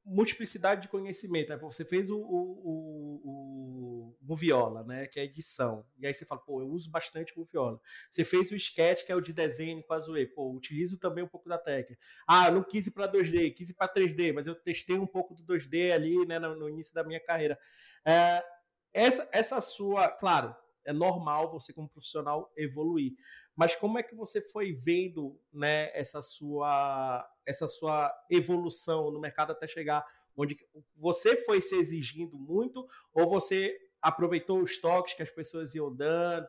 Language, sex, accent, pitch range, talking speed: Portuguese, male, Brazilian, 150-190 Hz, 185 wpm